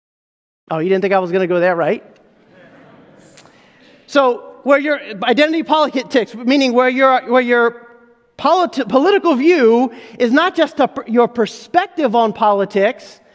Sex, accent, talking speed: male, American, 145 wpm